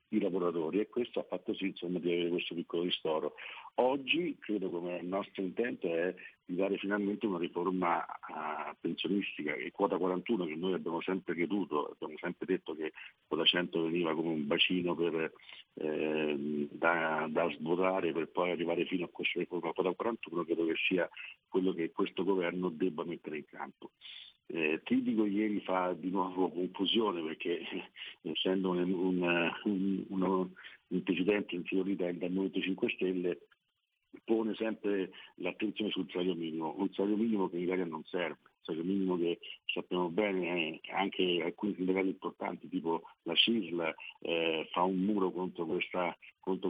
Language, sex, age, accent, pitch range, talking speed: Italian, male, 50-69, native, 85-95 Hz, 160 wpm